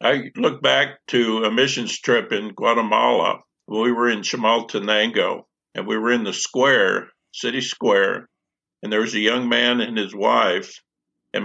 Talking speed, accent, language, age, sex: 160 wpm, American, English, 50-69, male